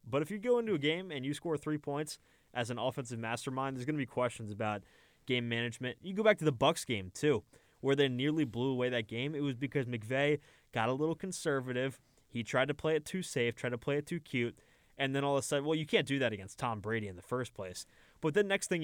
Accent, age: American, 20-39